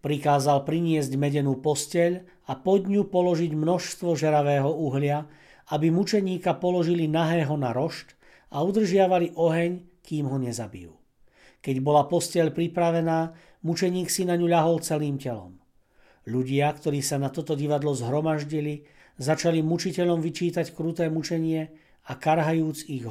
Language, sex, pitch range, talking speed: Slovak, male, 140-170 Hz, 125 wpm